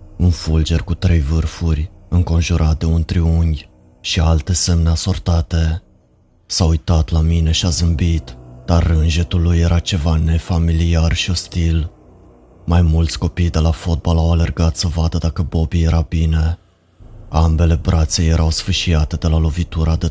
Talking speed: 150 wpm